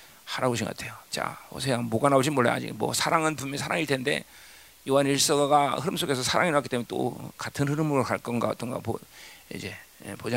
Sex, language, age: male, Korean, 40-59